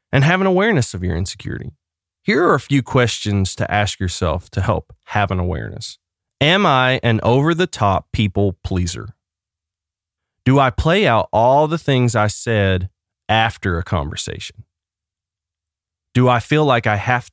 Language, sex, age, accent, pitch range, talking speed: English, male, 30-49, American, 90-130 Hz, 150 wpm